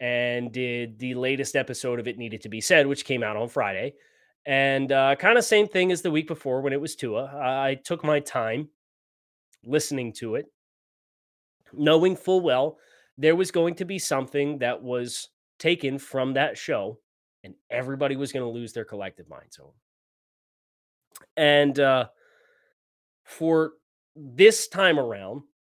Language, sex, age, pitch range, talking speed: English, male, 20-39, 120-155 Hz, 160 wpm